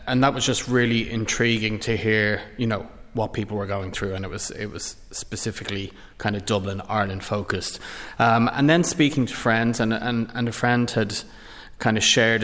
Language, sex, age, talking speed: English, male, 20-39, 200 wpm